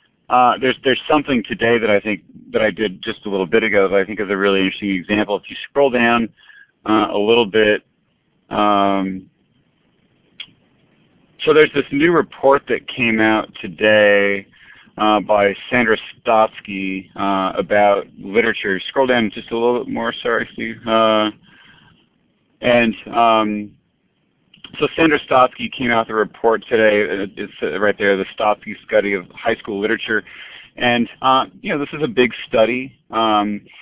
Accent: American